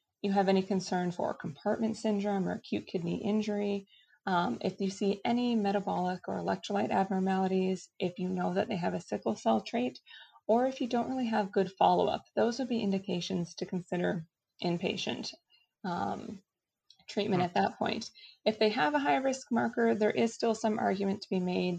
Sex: female